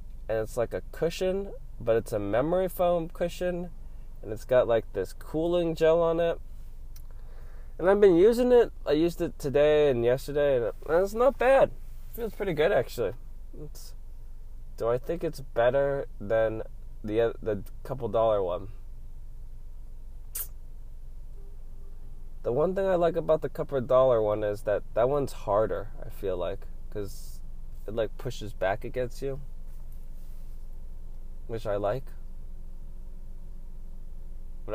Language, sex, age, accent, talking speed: English, male, 20-39, American, 140 wpm